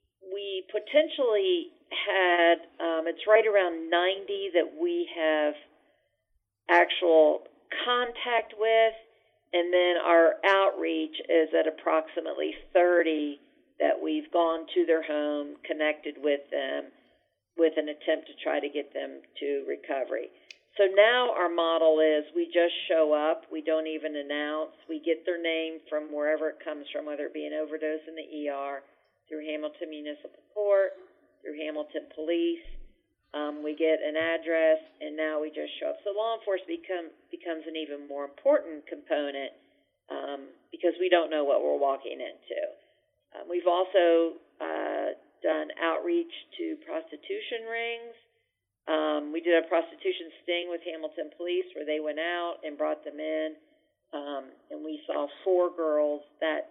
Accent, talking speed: American, 150 wpm